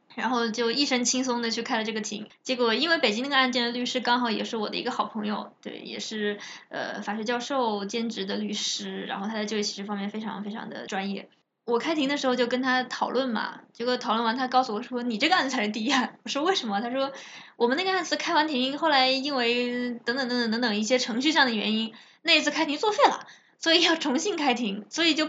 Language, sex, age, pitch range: Chinese, female, 20-39, 215-265 Hz